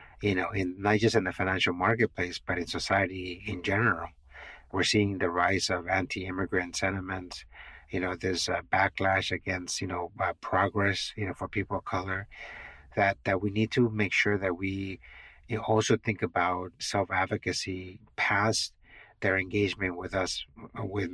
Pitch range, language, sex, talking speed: 95-105 Hz, English, male, 165 wpm